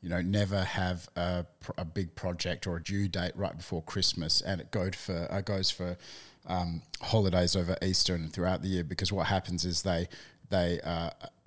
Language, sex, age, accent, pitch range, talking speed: English, male, 30-49, Australian, 90-105 Hz, 195 wpm